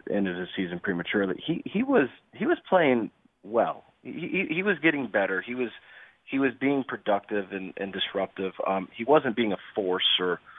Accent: American